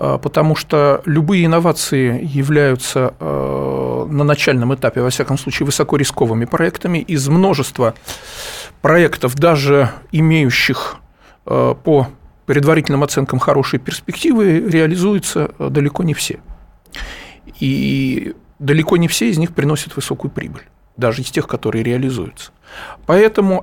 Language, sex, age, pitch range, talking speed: Russian, male, 40-59, 135-175 Hz, 105 wpm